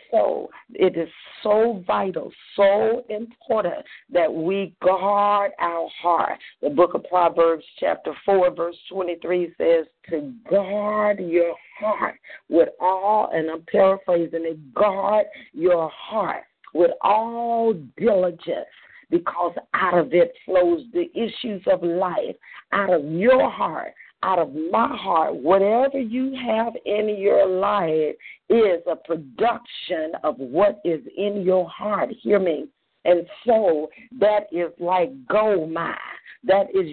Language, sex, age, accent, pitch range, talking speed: English, female, 50-69, American, 175-215 Hz, 130 wpm